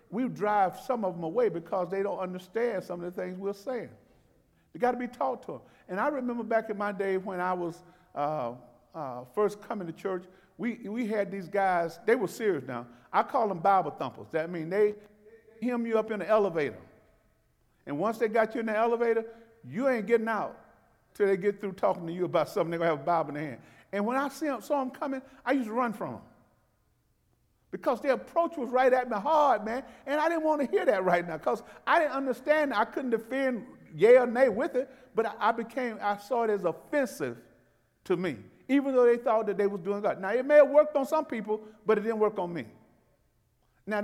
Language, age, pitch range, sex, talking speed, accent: English, 50-69, 185-255 Hz, male, 235 wpm, American